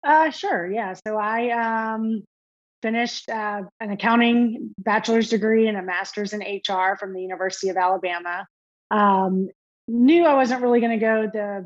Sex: female